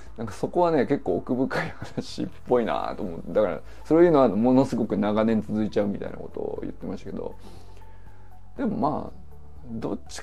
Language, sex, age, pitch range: Japanese, male, 20-39, 105-170 Hz